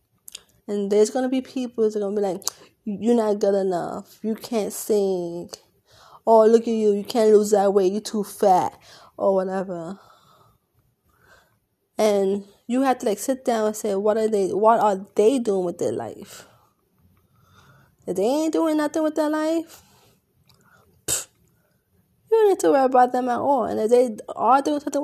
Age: 20-39